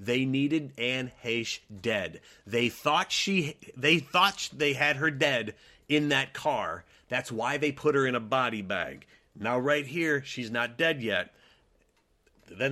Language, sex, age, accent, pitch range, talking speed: English, male, 30-49, American, 110-145 Hz, 160 wpm